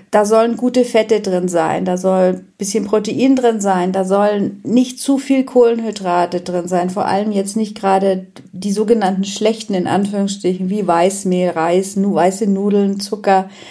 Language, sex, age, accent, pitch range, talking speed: German, female, 40-59, German, 190-240 Hz, 160 wpm